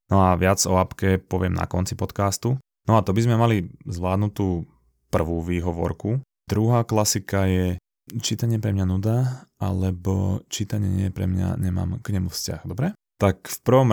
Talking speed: 165 wpm